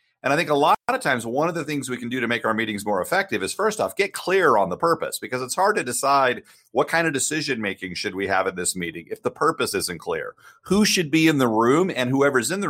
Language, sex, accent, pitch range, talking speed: English, male, American, 105-150 Hz, 280 wpm